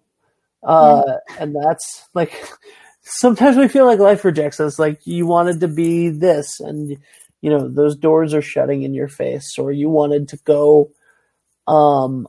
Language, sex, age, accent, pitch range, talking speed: English, male, 30-49, American, 145-160 Hz, 160 wpm